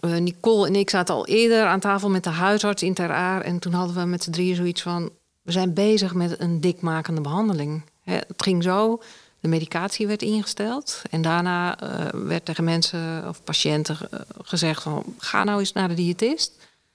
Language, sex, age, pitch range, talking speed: Dutch, female, 40-59, 165-205 Hz, 175 wpm